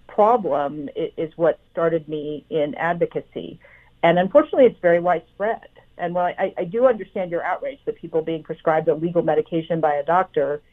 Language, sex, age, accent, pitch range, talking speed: English, female, 50-69, American, 160-200 Hz, 170 wpm